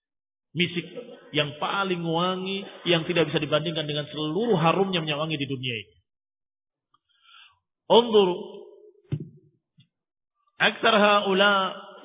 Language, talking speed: Indonesian, 85 wpm